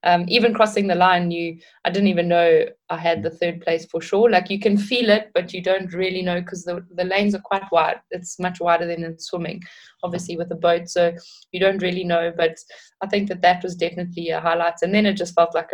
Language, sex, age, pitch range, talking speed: English, female, 20-39, 165-185 Hz, 240 wpm